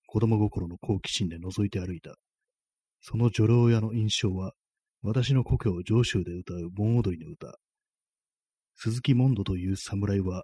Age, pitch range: 30-49, 95-115 Hz